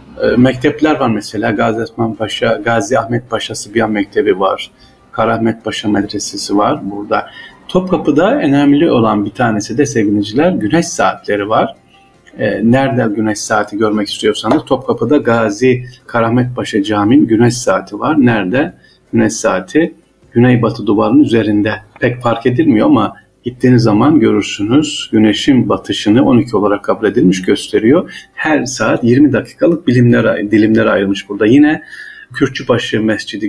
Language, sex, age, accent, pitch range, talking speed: Turkish, male, 50-69, native, 110-135 Hz, 125 wpm